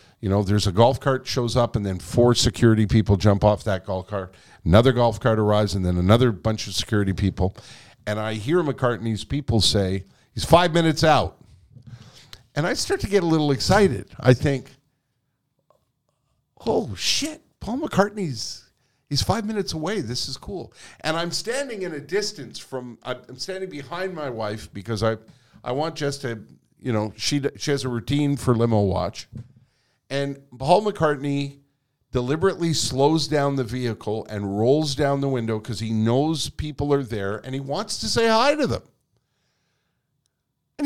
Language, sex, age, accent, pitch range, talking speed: English, male, 50-69, American, 110-145 Hz, 170 wpm